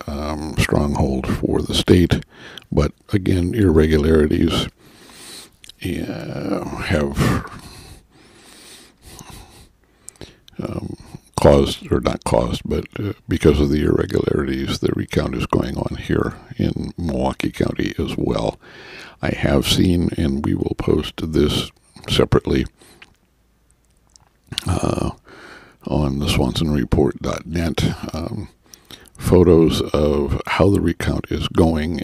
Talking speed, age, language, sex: 95 wpm, 60-79, English, male